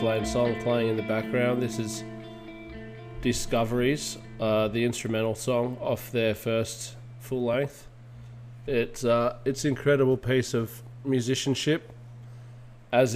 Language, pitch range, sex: English, 115-125 Hz, male